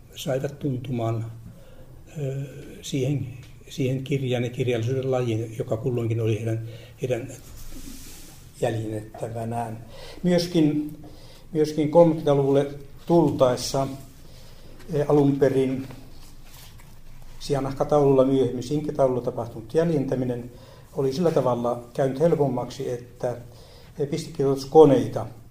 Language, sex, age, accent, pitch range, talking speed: Finnish, male, 60-79, native, 125-140 Hz, 70 wpm